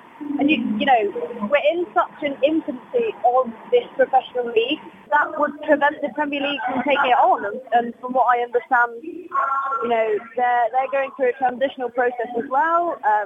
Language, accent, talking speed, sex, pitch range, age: English, British, 185 wpm, female, 240-305 Hz, 30-49